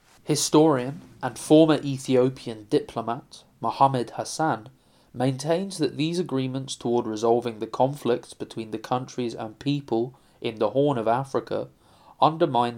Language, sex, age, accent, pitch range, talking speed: English, male, 20-39, British, 110-140 Hz, 120 wpm